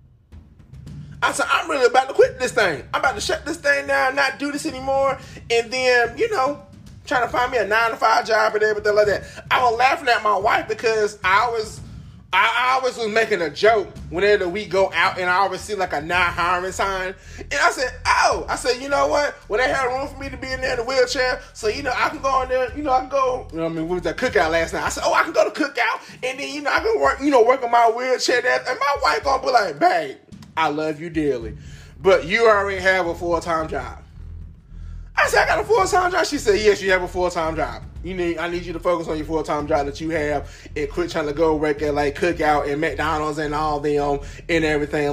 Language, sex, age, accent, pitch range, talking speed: English, male, 20-39, American, 155-255 Hz, 265 wpm